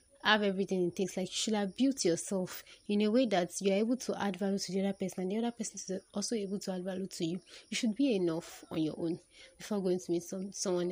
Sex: female